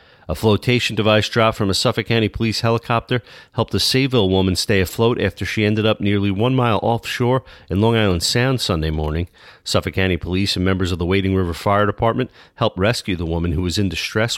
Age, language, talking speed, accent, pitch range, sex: 40-59, English, 205 wpm, American, 85-105 Hz, male